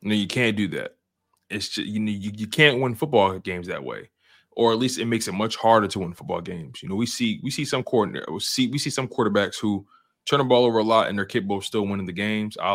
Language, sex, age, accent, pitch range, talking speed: English, male, 20-39, American, 95-115 Hz, 285 wpm